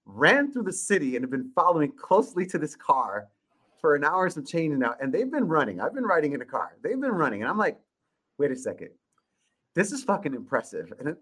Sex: male